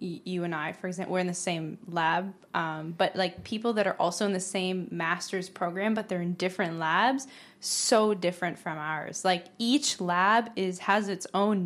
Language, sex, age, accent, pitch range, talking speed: English, female, 20-39, American, 180-205 Hz, 195 wpm